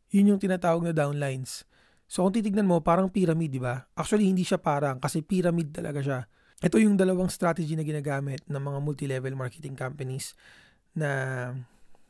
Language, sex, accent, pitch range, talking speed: Filipino, male, native, 135-165 Hz, 165 wpm